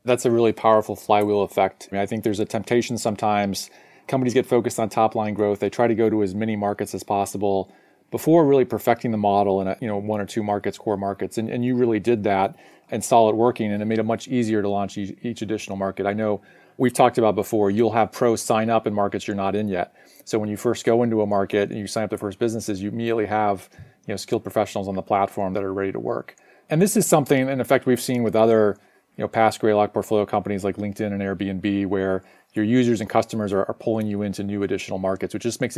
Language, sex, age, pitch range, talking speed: English, male, 30-49, 100-120 Hz, 250 wpm